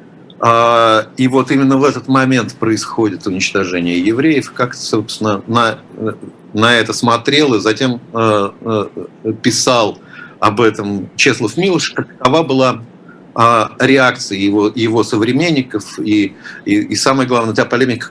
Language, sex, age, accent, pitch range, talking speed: Russian, male, 50-69, native, 110-135 Hz, 115 wpm